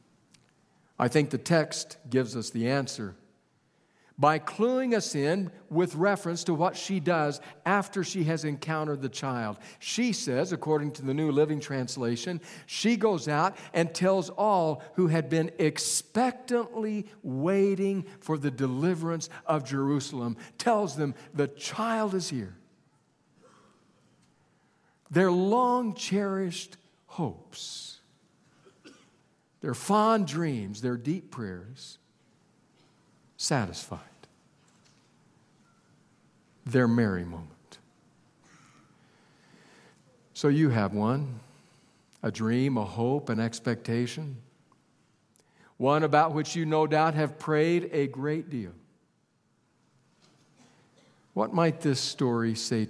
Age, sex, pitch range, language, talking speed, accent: 60-79, male, 130-180 Hz, English, 105 wpm, American